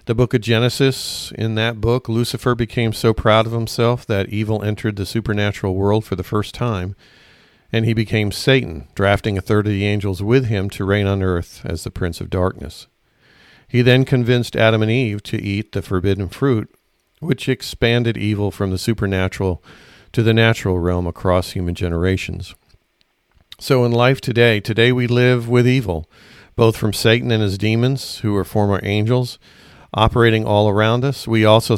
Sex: male